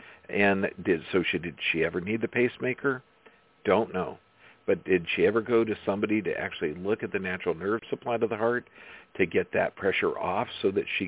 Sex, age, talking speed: male, 50-69, 205 wpm